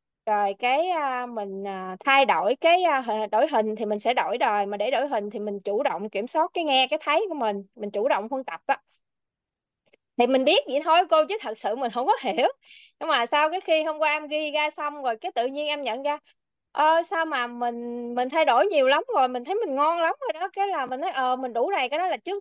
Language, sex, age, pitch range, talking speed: Vietnamese, female, 20-39, 215-310 Hz, 255 wpm